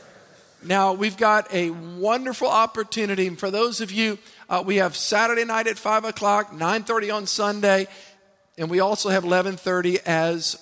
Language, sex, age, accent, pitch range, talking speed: English, male, 50-69, American, 190-220 Hz, 170 wpm